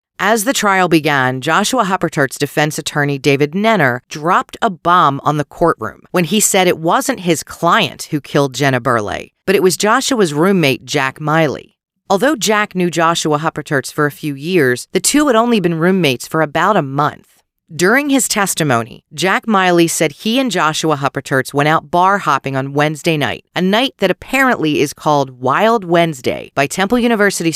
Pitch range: 145-195 Hz